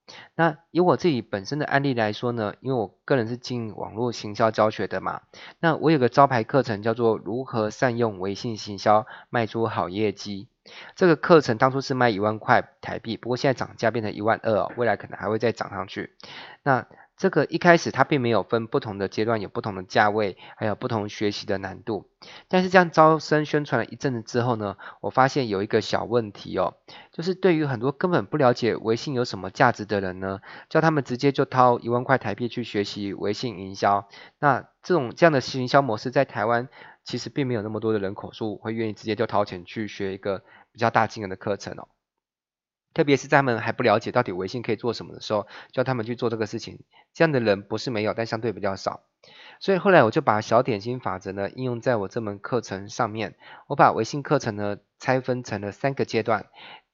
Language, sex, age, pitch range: Chinese, male, 20-39, 105-130 Hz